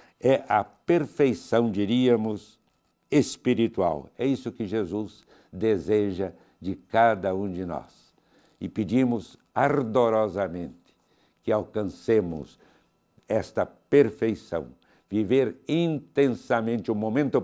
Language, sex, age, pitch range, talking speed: Portuguese, male, 60-79, 95-130 Hz, 90 wpm